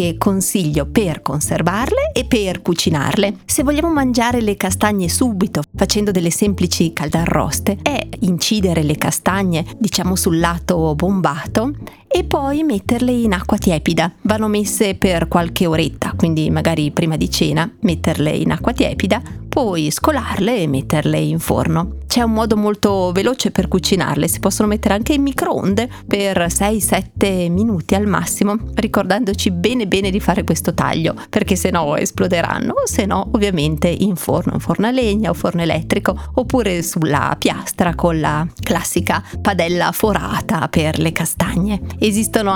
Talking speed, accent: 145 wpm, native